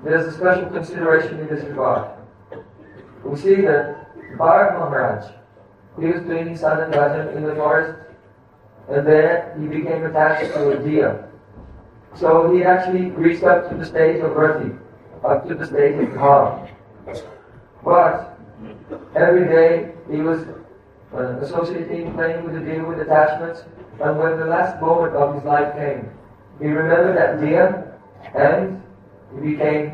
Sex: male